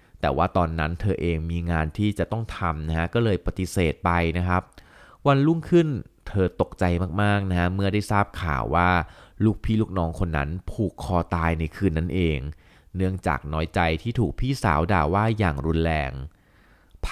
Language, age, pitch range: Thai, 20-39, 80-100 Hz